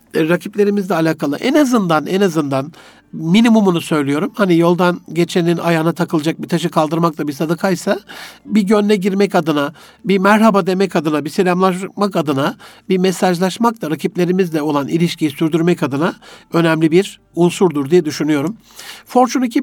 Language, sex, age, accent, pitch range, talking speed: Turkish, male, 60-79, native, 155-195 Hz, 135 wpm